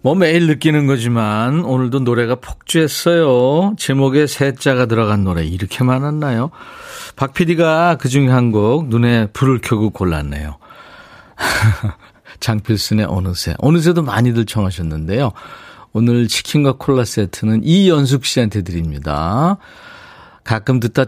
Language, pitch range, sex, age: Korean, 100-150 Hz, male, 40-59